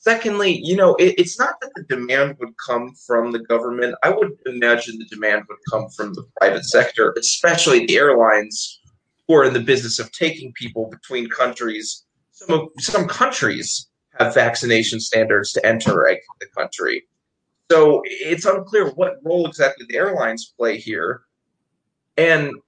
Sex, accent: male, American